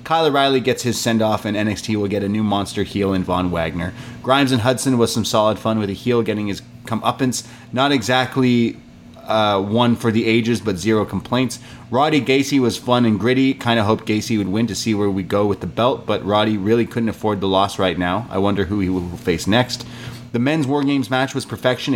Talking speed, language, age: 225 wpm, English, 30-49